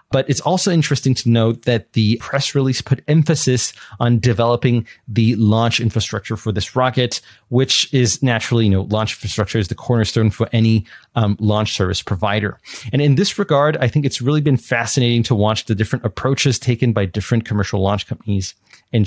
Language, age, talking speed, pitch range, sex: English, 30-49, 185 wpm, 110-135 Hz, male